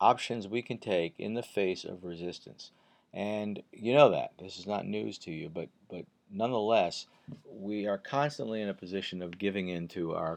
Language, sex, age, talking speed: English, male, 50-69, 190 wpm